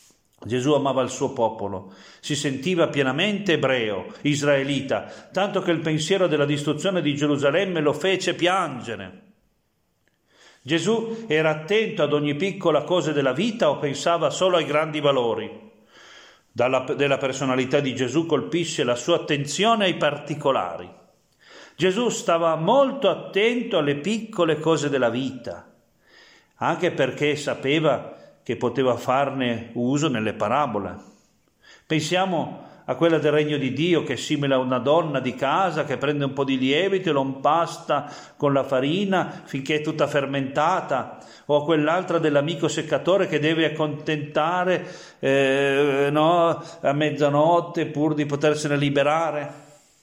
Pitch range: 140-170 Hz